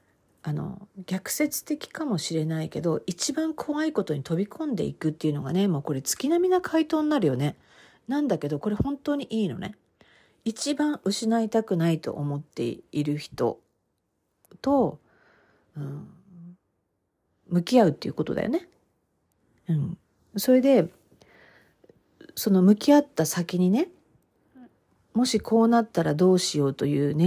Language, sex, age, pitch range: Japanese, female, 40-59, 160-250 Hz